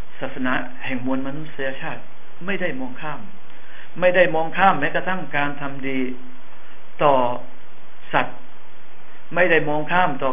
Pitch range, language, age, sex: 130-175 Hz, Thai, 60-79, male